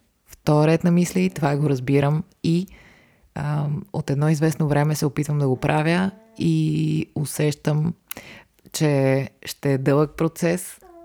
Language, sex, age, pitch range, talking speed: Bulgarian, female, 20-39, 140-165 Hz, 135 wpm